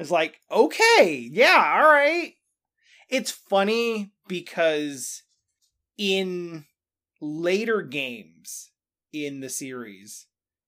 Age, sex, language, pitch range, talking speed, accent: 30-49, male, English, 145-205 Hz, 85 wpm, American